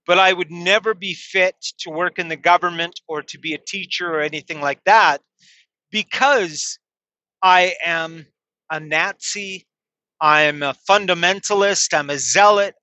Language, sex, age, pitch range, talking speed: English, male, 30-49, 165-210 Hz, 150 wpm